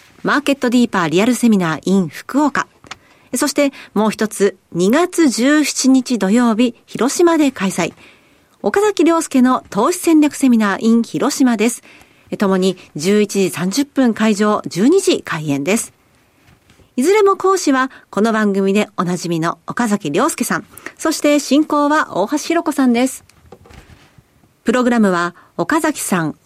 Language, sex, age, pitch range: Japanese, female, 40-59, 200-300 Hz